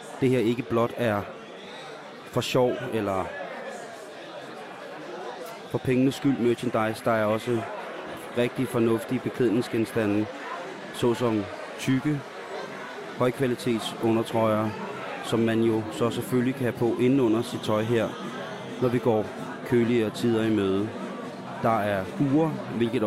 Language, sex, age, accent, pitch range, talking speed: Danish, male, 30-49, native, 110-130 Hz, 115 wpm